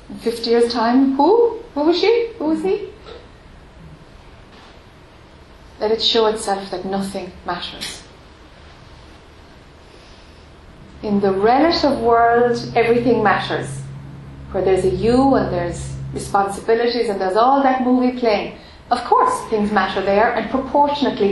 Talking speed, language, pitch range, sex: 125 wpm, English, 160-230 Hz, female